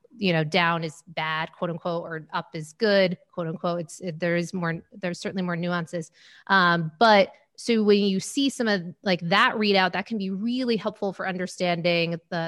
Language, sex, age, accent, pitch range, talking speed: English, female, 30-49, American, 175-210 Hz, 190 wpm